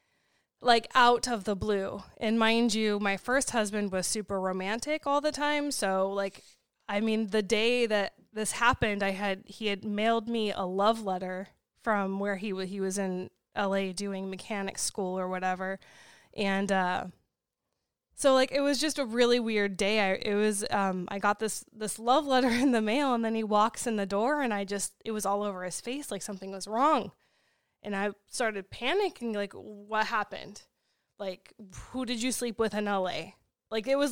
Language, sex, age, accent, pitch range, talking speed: English, female, 20-39, American, 200-235 Hz, 195 wpm